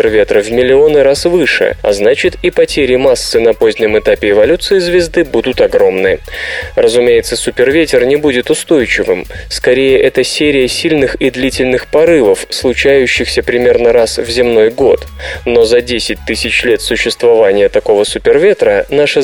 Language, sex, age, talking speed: Russian, male, 20-39, 135 wpm